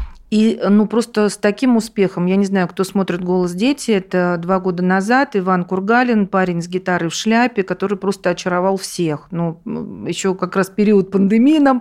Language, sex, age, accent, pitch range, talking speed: Russian, female, 40-59, native, 180-225 Hz, 180 wpm